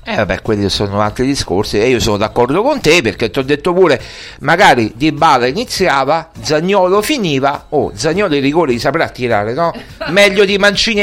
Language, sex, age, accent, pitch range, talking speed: Italian, male, 60-79, native, 140-170 Hz, 195 wpm